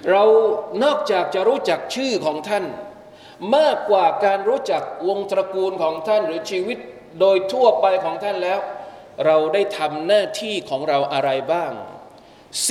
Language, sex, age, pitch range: Thai, male, 20-39, 170-215 Hz